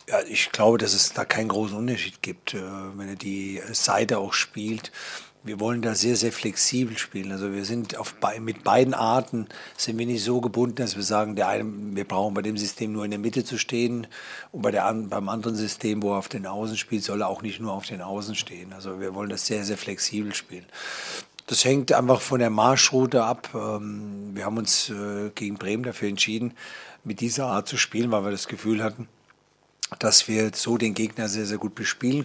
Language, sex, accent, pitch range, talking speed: German, male, German, 105-115 Hz, 210 wpm